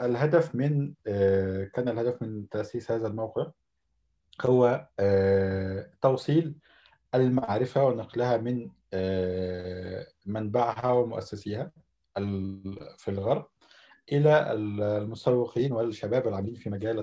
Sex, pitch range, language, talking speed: male, 105-125 Hz, Arabic, 80 wpm